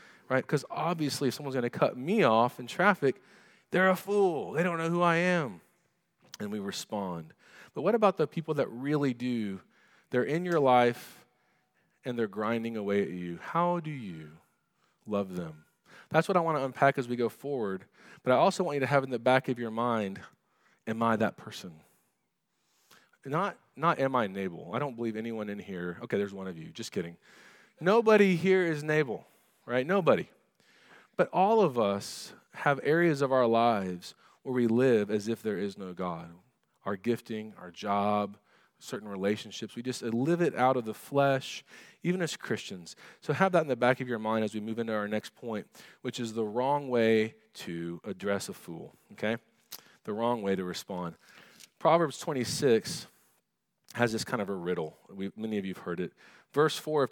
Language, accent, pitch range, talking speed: English, American, 105-150 Hz, 190 wpm